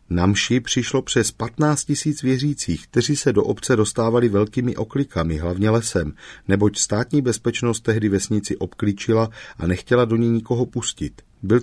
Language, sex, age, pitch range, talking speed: Czech, male, 40-59, 95-125 Hz, 150 wpm